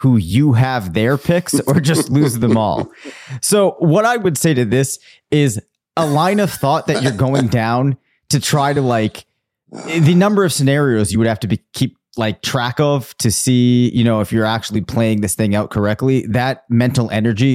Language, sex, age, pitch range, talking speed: English, male, 30-49, 105-135 Hz, 200 wpm